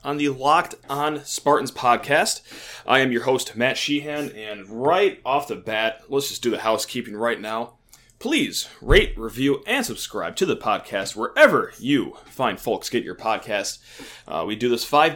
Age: 30-49